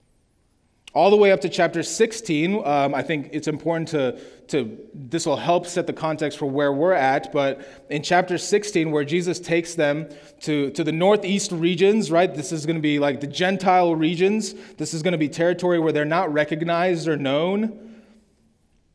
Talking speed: 185 wpm